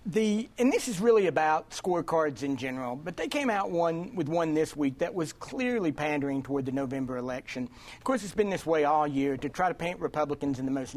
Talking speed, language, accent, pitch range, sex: 235 wpm, English, American, 145-205 Hz, male